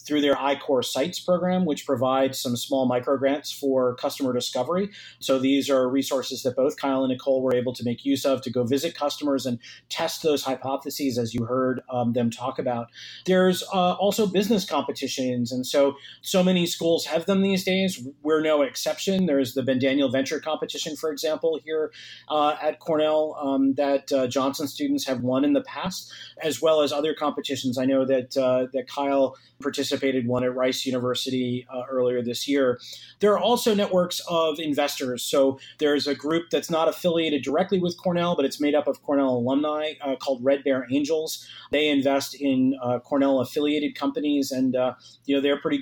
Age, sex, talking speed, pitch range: 30-49, male, 185 wpm, 130-155 Hz